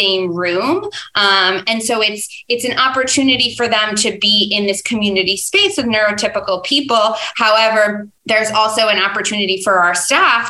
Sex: female